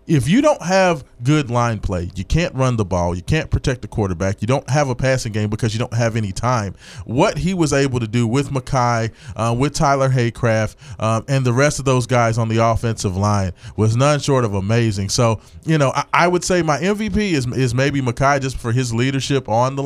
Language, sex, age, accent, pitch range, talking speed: English, male, 20-39, American, 110-135 Hz, 230 wpm